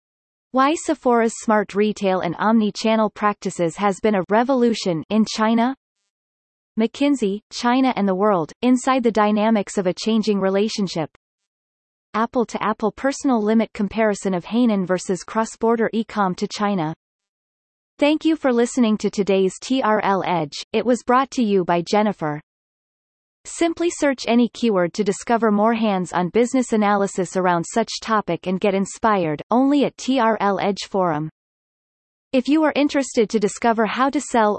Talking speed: 145 wpm